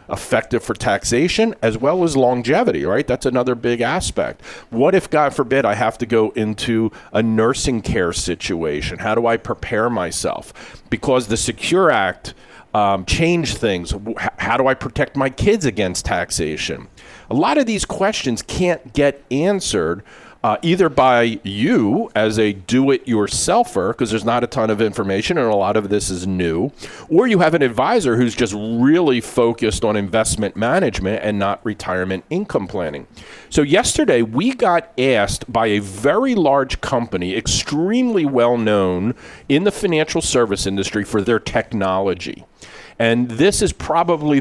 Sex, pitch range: male, 105-140 Hz